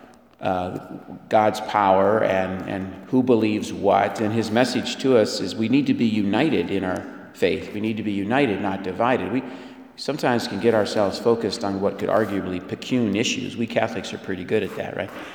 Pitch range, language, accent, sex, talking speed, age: 95-110 Hz, English, American, male, 190 wpm, 50-69